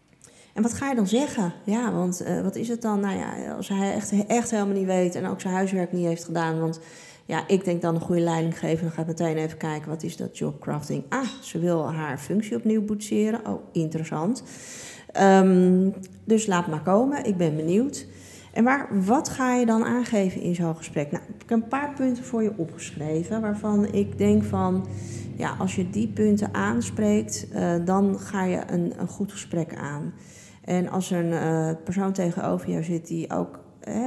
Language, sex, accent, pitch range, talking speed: Dutch, female, Dutch, 165-205 Hz, 205 wpm